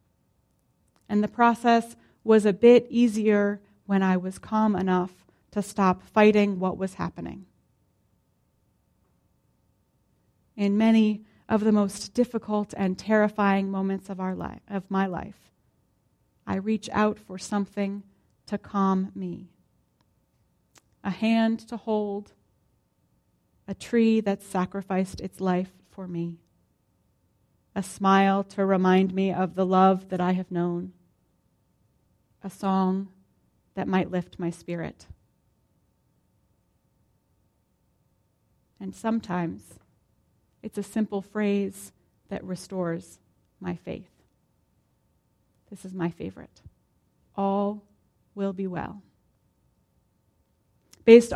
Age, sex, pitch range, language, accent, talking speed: 30-49, female, 185-215 Hz, English, American, 105 wpm